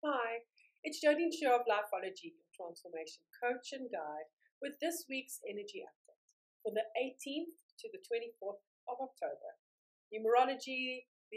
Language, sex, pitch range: English, female, 215-325 Hz